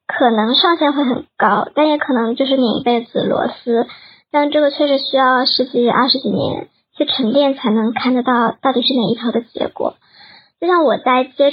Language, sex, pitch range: Chinese, male, 245-290 Hz